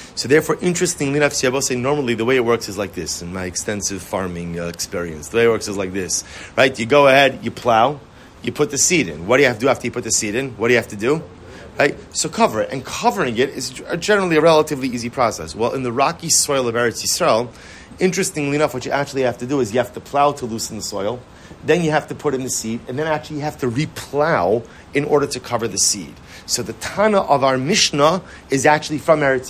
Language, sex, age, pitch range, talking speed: English, male, 30-49, 115-155 Hz, 255 wpm